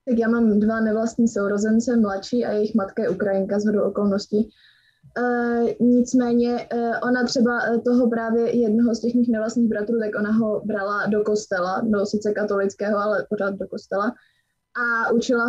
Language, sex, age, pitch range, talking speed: Slovak, female, 20-39, 210-235 Hz, 160 wpm